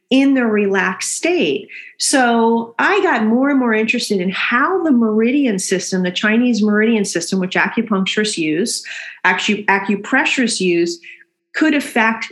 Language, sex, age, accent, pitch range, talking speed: English, female, 40-59, American, 190-255 Hz, 135 wpm